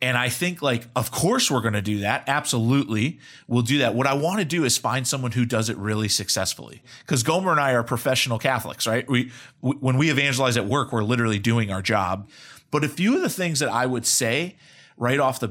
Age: 30-49